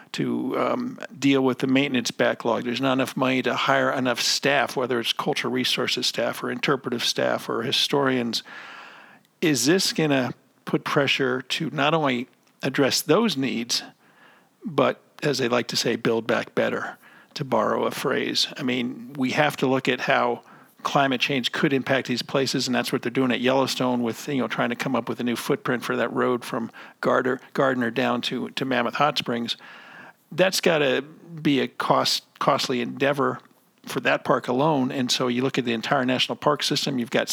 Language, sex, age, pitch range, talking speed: English, male, 50-69, 125-140 Hz, 185 wpm